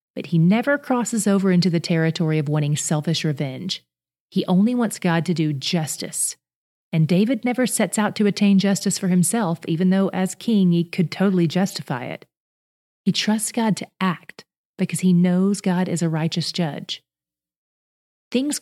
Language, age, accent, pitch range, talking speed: English, 30-49, American, 160-205 Hz, 170 wpm